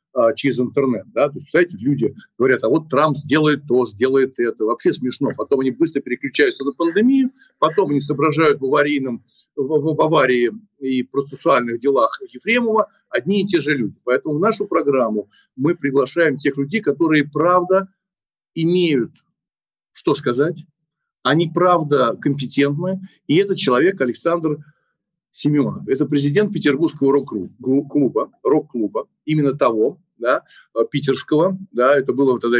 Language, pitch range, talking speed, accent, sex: Russian, 140-190 Hz, 140 wpm, native, male